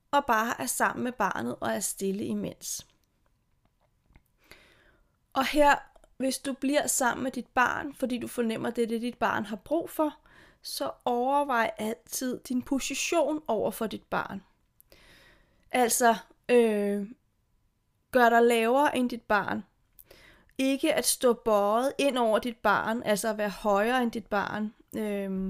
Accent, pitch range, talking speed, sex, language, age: native, 220-275 Hz, 150 wpm, female, Danish, 30-49